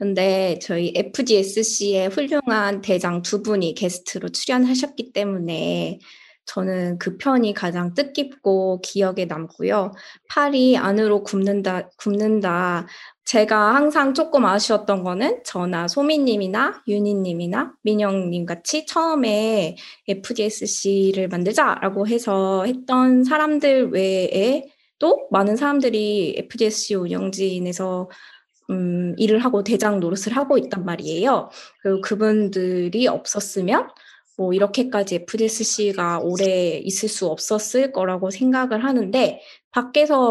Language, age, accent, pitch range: Korean, 20-39, native, 190-235 Hz